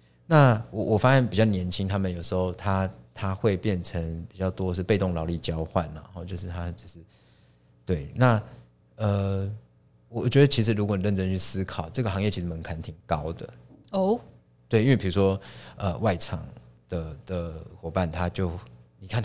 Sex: male